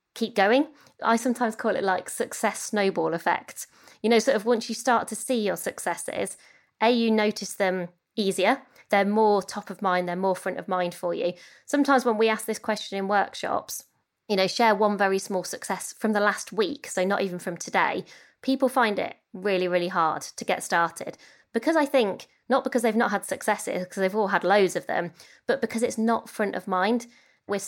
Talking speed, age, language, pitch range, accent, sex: 205 wpm, 20-39, English, 180-230 Hz, British, female